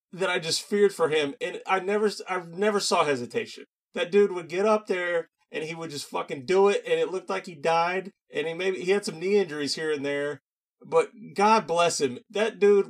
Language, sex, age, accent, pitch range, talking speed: English, male, 30-49, American, 145-195 Hz, 230 wpm